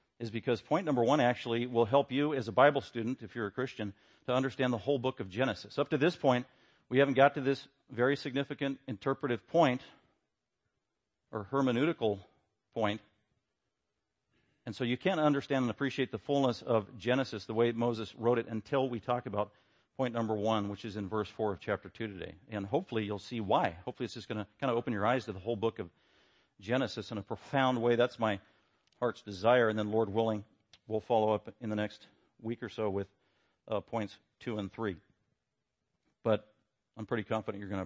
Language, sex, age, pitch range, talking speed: English, male, 50-69, 110-135 Hz, 200 wpm